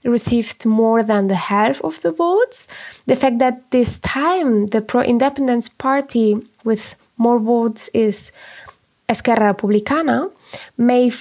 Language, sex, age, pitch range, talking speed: English, female, 20-39, 210-255 Hz, 125 wpm